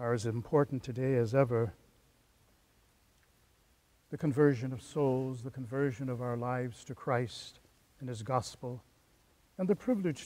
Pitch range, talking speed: 115-140 Hz, 135 wpm